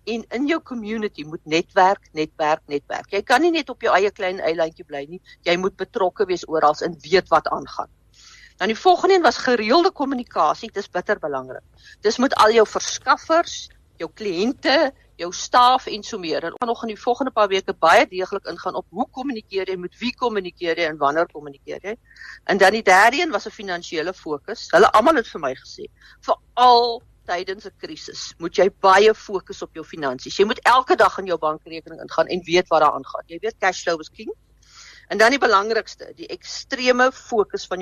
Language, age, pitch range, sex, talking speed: English, 50-69, 170-250 Hz, female, 195 wpm